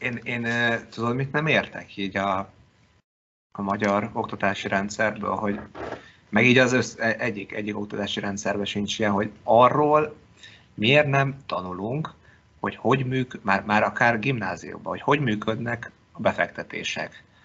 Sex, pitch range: male, 100-120 Hz